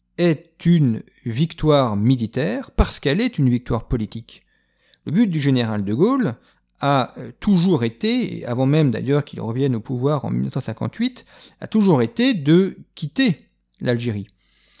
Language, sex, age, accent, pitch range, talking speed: French, male, 40-59, French, 115-165 Hz, 140 wpm